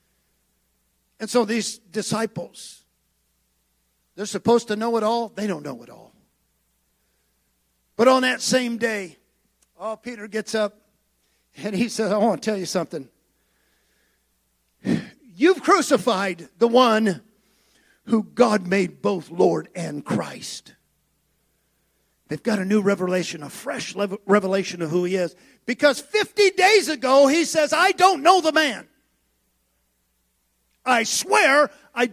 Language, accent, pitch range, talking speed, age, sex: English, American, 160-235 Hz, 130 wpm, 50-69, male